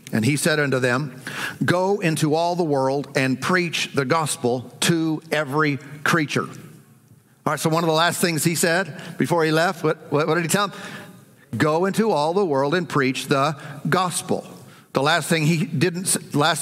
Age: 50-69